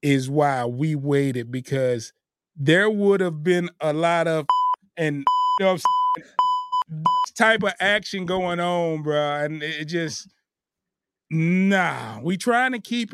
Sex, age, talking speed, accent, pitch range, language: male, 30-49, 125 wpm, American, 135-195 Hz, English